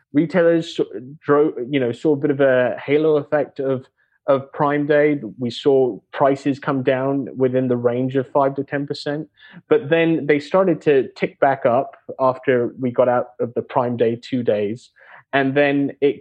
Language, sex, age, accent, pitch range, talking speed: English, male, 20-39, British, 120-145 Hz, 175 wpm